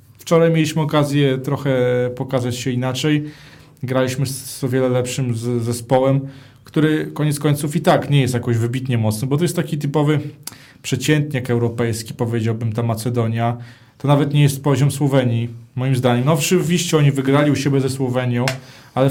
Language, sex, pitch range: Polish, male, 130-180 Hz